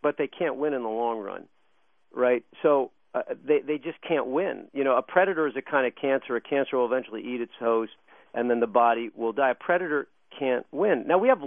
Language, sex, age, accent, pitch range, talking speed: English, male, 50-69, American, 135-175 Hz, 235 wpm